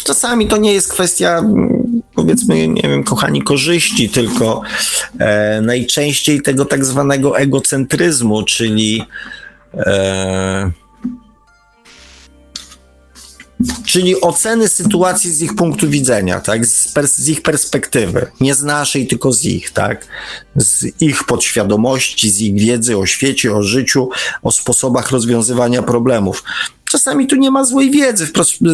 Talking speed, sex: 125 wpm, male